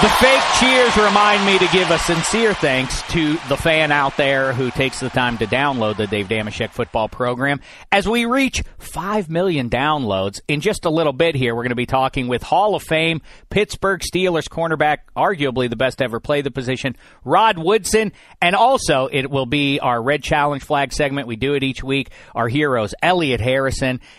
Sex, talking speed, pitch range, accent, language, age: male, 195 wpm, 125-160 Hz, American, English, 40-59